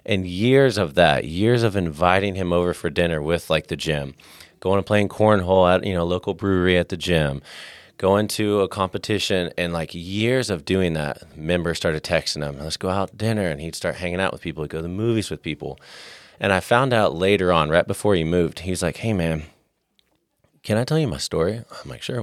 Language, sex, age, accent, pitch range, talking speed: English, male, 30-49, American, 80-100 Hz, 225 wpm